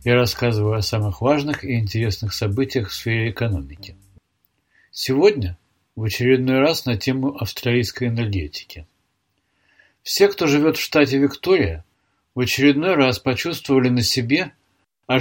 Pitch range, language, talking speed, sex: 105-135 Hz, Russian, 125 wpm, male